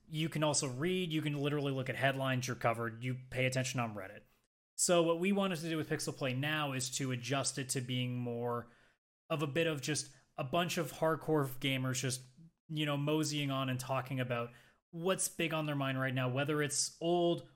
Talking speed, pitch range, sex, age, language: 210 wpm, 130-165 Hz, male, 20-39, English